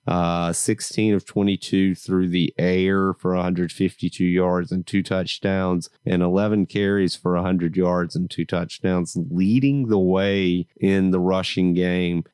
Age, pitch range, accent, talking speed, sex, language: 30-49, 90-105 Hz, American, 140 wpm, male, English